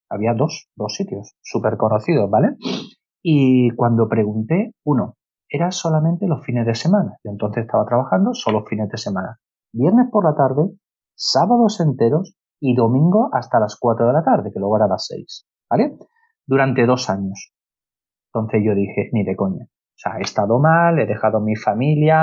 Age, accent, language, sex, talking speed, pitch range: 30-49, Spanish, Spanish, male, 175 wpm, 110-170 Hz